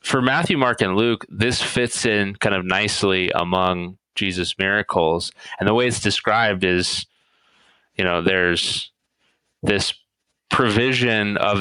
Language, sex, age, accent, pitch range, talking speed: English, male, 20-39, American, 95-115 Hz, 135 wpm